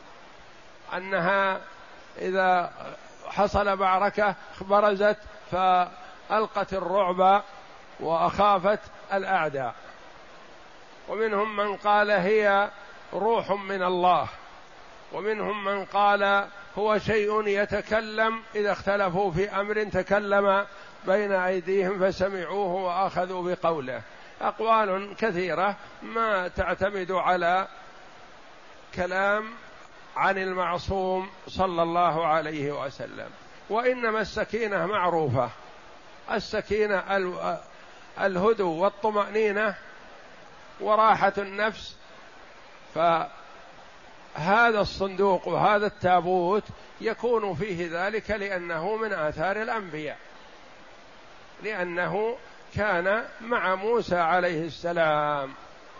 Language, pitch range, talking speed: Arabic, 185-210 Hz, 75 wpm